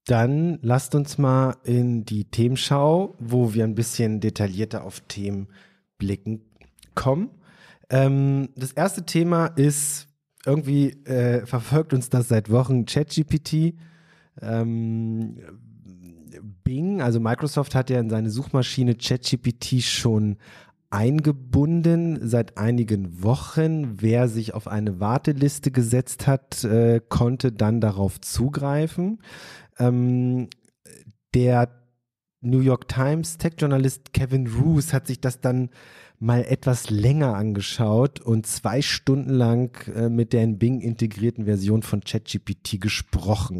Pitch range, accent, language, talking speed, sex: 110-140 Hz, German, German, 115 wpm, male